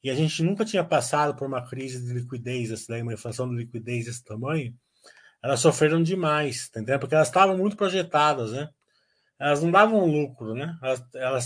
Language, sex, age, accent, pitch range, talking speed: Portuguese, male, 20-39, Brazilian, 125-175 Hz, 175 wpm